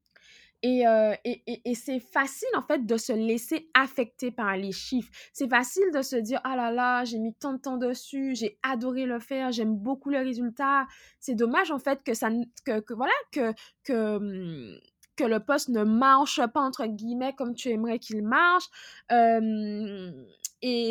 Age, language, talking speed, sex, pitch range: 20-39, French, 185 wpm, female, 225-285 Hz